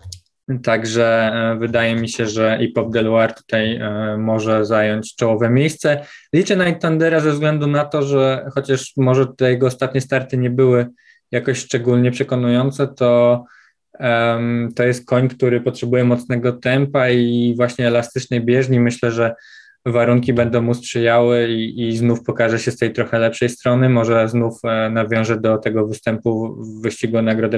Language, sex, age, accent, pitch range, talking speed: Polish, male, 20-39, native, 115-135 Hz, 160 wpm